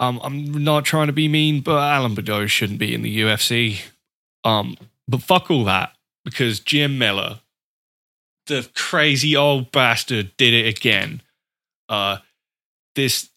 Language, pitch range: English, 105-140 Hz